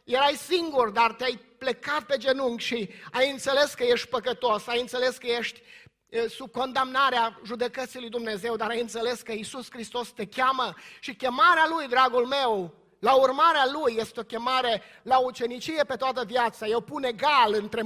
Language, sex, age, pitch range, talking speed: Romanian, male, 30-49, 225-265 Hz, 170 wpm